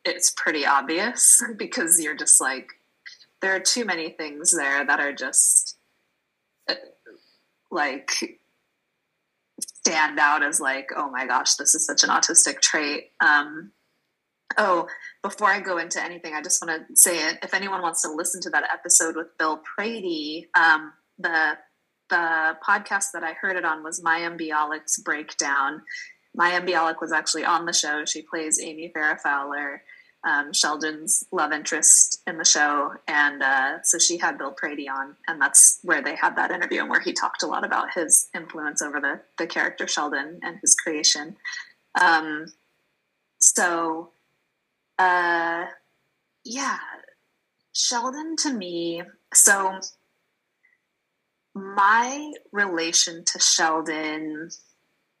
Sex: female